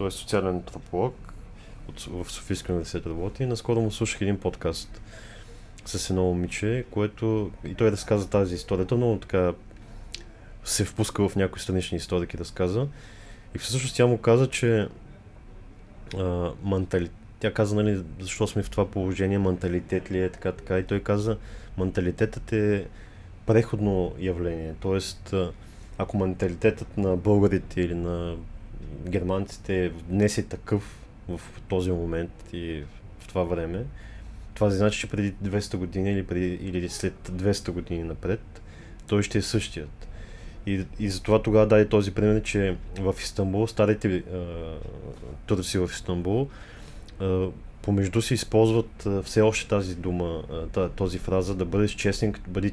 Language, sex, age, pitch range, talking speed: Bulgarian, male, 20-39, 90-105 Hz, 140 wpm